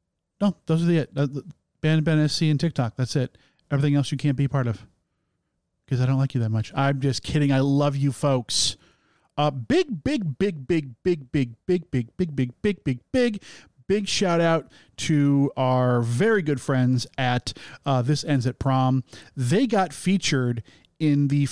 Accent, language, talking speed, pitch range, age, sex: American, English, 180 wpm, 130-160 Hz, 40-59, male